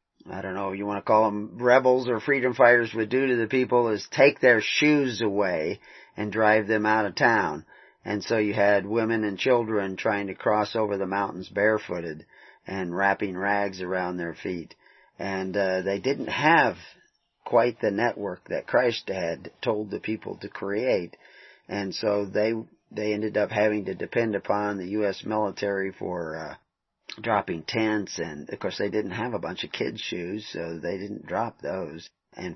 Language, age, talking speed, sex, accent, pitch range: English, 40-59, 180 wpm, male, American, 100-115 Hz